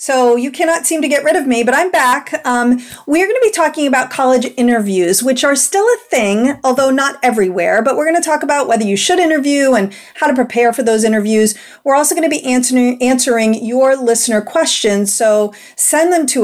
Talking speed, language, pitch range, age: 210 wpm, English, 220-285 Hz, 40-59